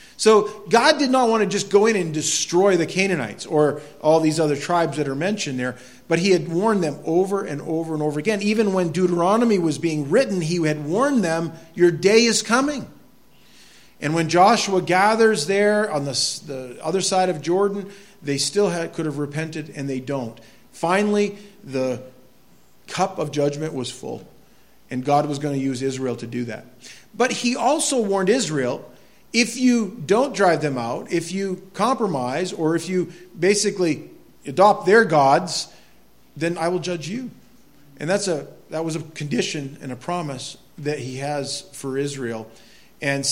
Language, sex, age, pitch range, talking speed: English, male, 40-59, 145-190 Hz, 175 wpm